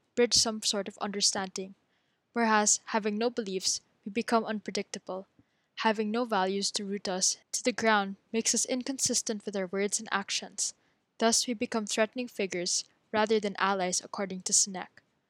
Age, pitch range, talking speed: 10-29, 200-235 Hz, 155 wpm